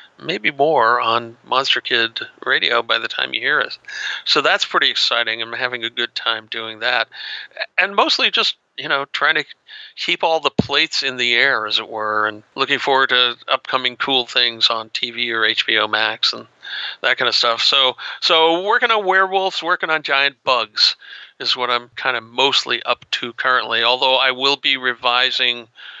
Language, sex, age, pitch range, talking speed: English, male, 50-69, 115-140 Hz, 185 wpm